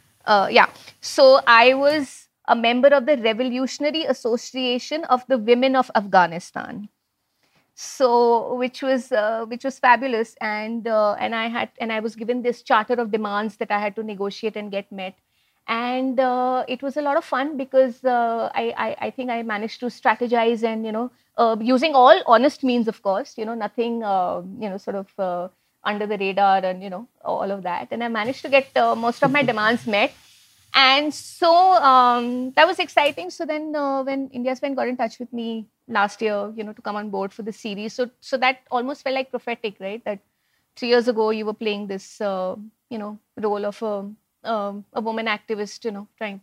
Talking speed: 205 wpm